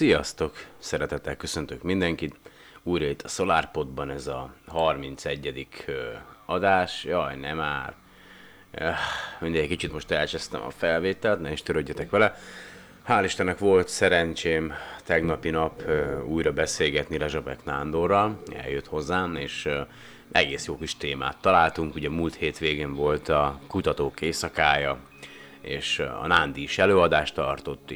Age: 30-49